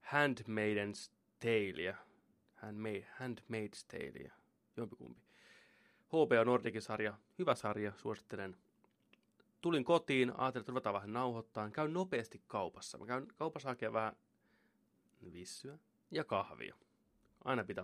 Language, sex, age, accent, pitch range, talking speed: Finnish, male, 30-49, native, 105-135 Hz, 100 wpm